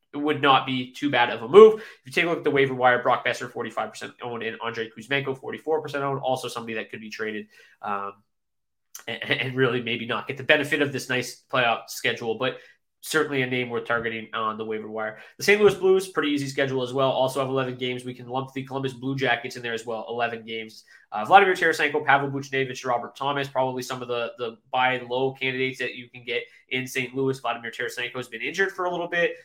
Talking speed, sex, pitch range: 240 wpm, male, 120-140 Hz